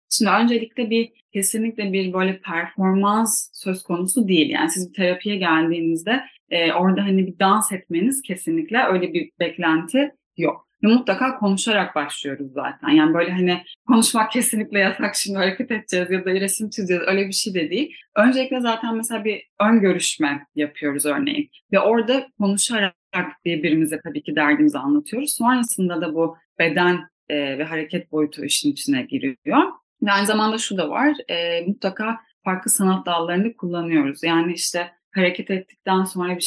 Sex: female